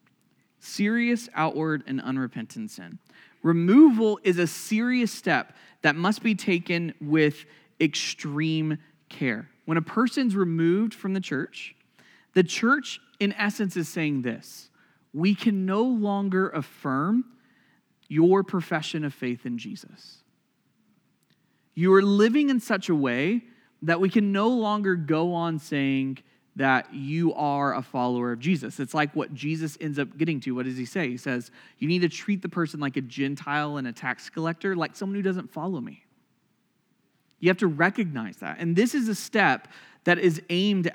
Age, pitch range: 30-49, 150-205 Hz